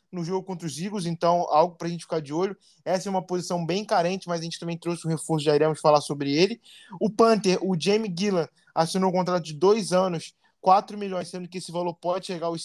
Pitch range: 165-195 Hz